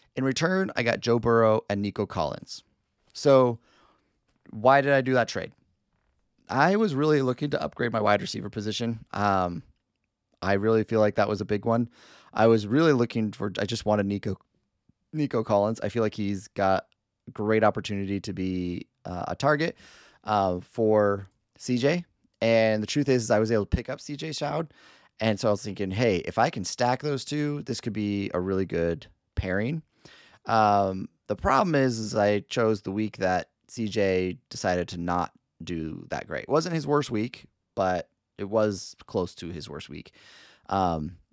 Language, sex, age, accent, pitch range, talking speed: English, male, 30-49, American, 95-120 Hz, 180 wpm